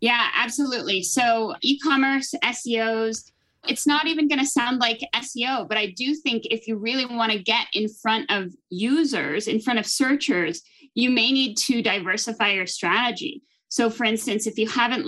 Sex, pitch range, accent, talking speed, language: female, 205-250 Hz, American, 175 wpm, English